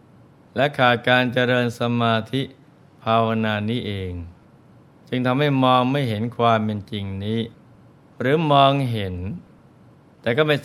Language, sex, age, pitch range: Thai, male, 20-39, 105-125 Hz